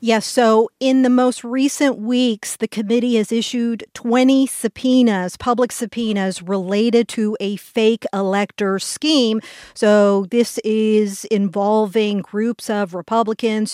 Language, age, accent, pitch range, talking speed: English, 50-69, American, 200-235 Hz, 120 wpm